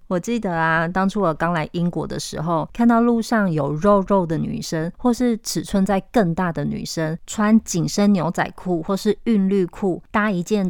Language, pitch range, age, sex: Chinese, 170-210 Hz, 20-39, female